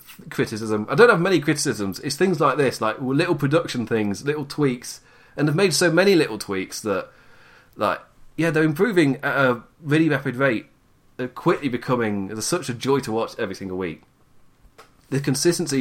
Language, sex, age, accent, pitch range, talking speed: English, male, 30-49, British, 110-140 Hz, 175 wpm